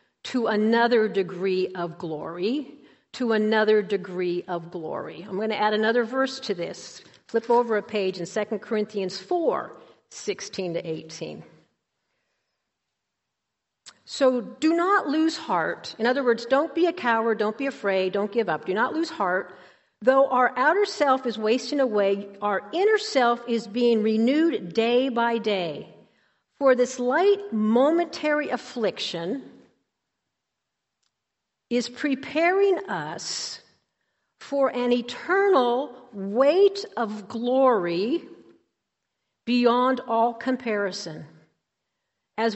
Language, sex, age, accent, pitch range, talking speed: English, female, 50-69, American, 195-265 Hz, 120 wpm